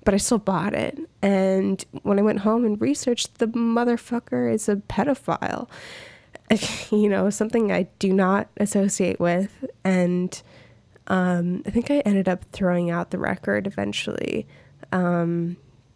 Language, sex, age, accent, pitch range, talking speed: English, female, 20-39, American, 170-200 Hz, 145 wpm